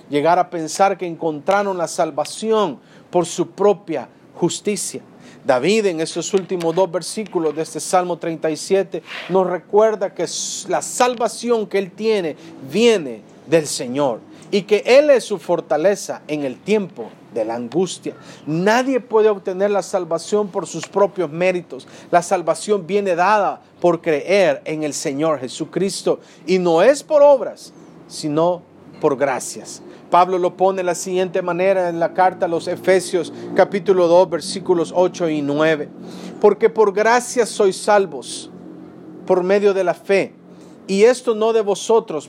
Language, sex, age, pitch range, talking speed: English, male, 50-69, 165-205 Hz, 150 wpm